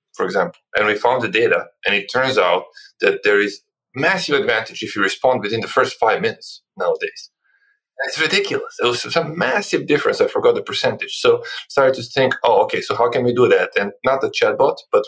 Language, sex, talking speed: English, male, 215 wpm